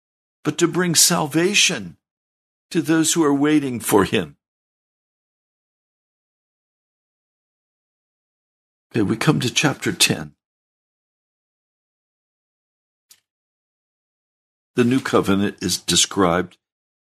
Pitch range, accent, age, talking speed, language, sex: 85-115 Hz, American, 60-79, 75 wpm, English, male